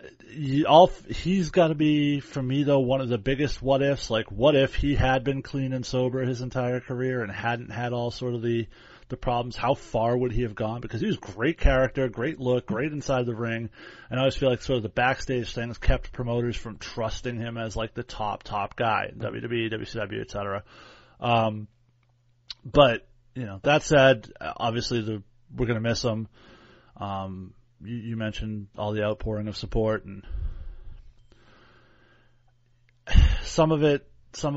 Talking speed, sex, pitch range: 175 wpm, male, 110-130 Hz